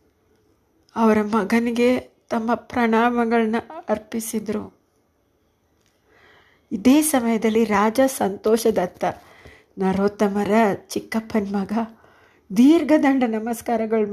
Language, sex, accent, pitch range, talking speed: Kannada, female, native, 200-240 Hz, 65 wpm